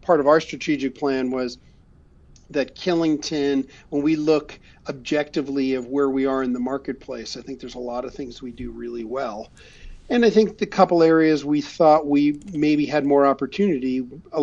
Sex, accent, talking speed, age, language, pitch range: male, American, 185 wpm, 40-59, English, 130-150 Hz